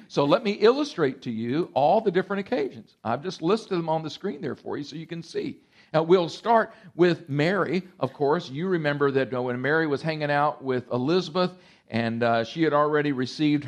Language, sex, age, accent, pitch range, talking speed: English, male, 50-69, American, 140-190 Hz, 205 wpm